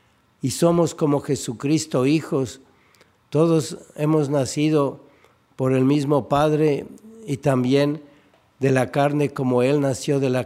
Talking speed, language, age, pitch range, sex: 125 wpm, Spanish, 60-79, 125-150 Hz, male